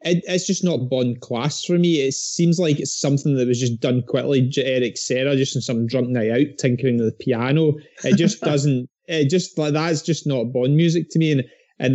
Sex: male